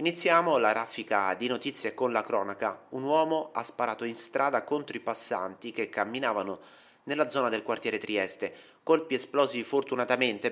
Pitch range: 105-140 Hz